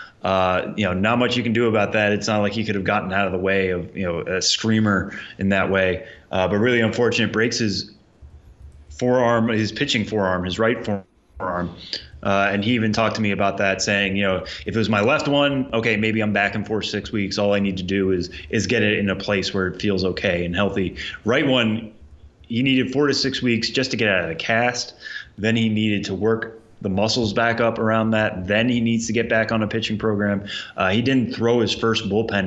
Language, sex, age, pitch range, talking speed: English, male, 20-39, 95-115 Hz, 240 wpm